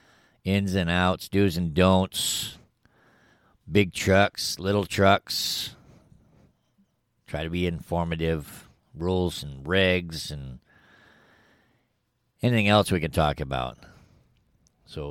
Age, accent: 50-69, American